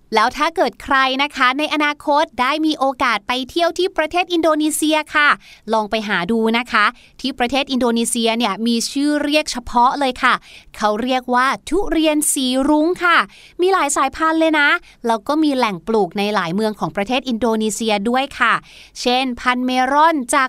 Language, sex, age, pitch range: Thai, female, 20-39, 225-305 Hz